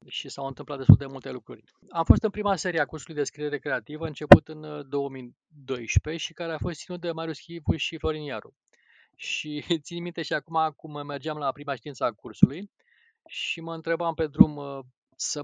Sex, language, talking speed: male, Romanian, 190 wpm